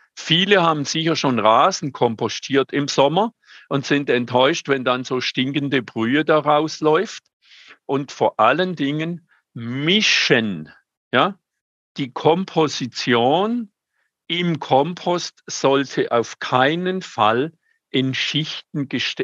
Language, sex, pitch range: German, male, 125-165 Hz